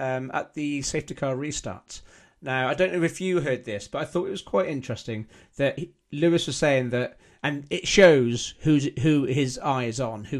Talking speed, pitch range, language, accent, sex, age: 215 wpm, 115-145 Hz, English, British, male, 40-59